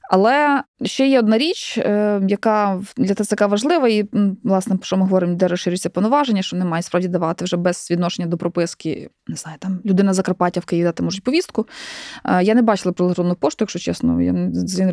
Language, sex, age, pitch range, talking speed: Ukrainian, female, 20-39, 175-225 Hz, 185 wpm